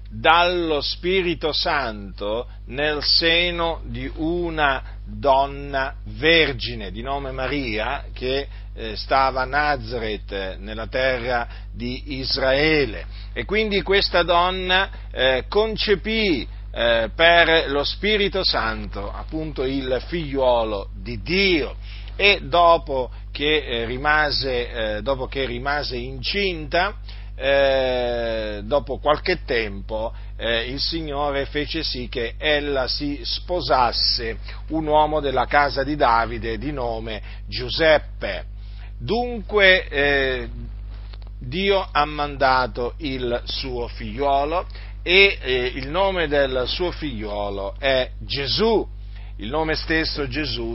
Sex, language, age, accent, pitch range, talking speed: male, Italian, 50-69, native, 110-150 Hz, 105 wpm